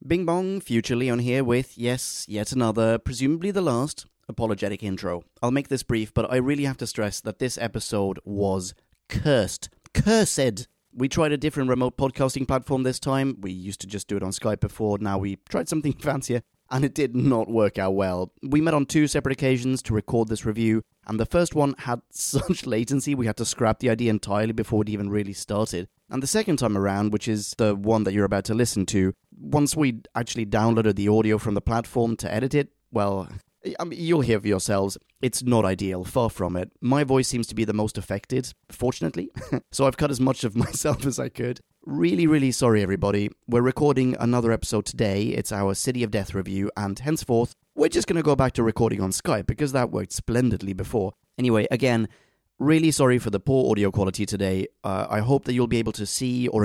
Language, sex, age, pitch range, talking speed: English, male, 30-49, 105-135 Hz, 210 wpm